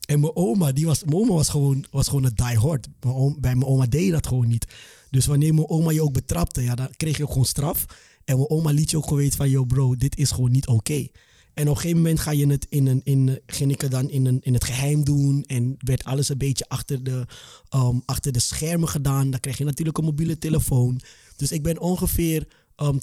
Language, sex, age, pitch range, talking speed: Dutch, male, 20-39, 130-150 Hz, 255 wpm